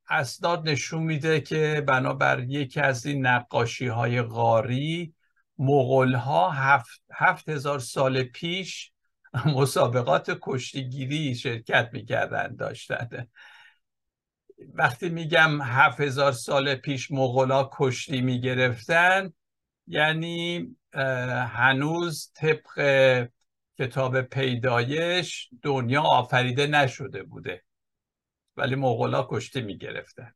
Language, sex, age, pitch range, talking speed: Persian, male, 60-79, 130-165 Hz, 90 wpm